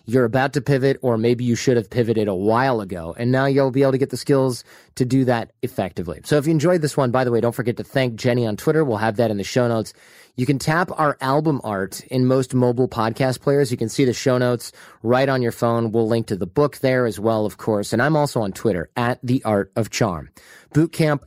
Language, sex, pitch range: English, male, 110-135 Hz